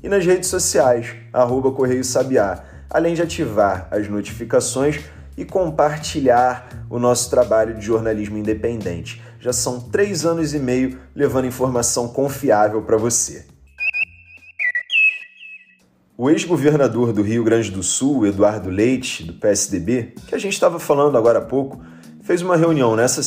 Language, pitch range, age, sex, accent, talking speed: Portuguese, 115-170 Hz, 30-49, male, Brazilian, 135 wpm